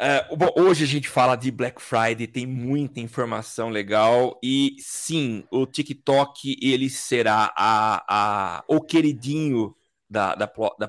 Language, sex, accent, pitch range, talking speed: Portuguese, male, Brazilian, 130-165 Hz, 115 wpm